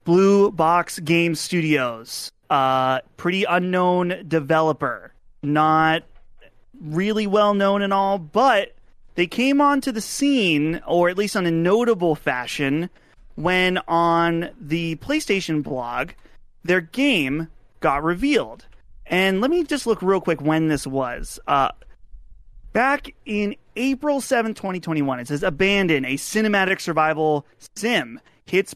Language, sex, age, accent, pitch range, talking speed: English, male, 30-49, American, 155-215 Hz, 125 wpm